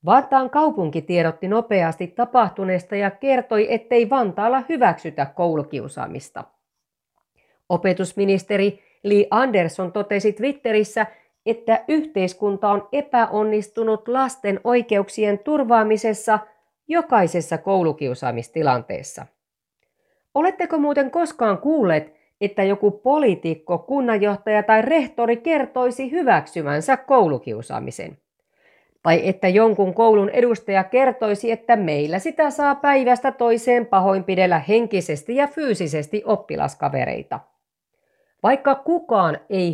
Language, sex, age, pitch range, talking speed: Finnish, female, 40-59, 185-255 Hz, 90 wpm